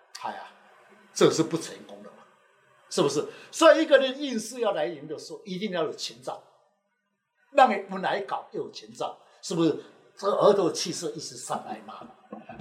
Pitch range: 175-295 Hz